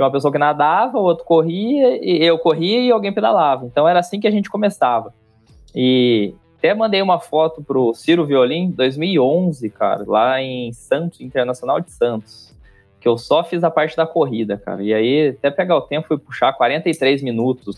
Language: Portuguese